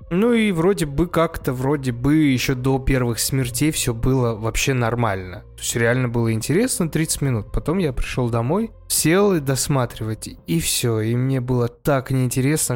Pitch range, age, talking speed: 120-140 Hz, 20-39, 170 wpm